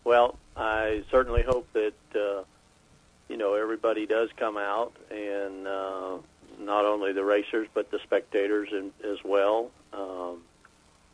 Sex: male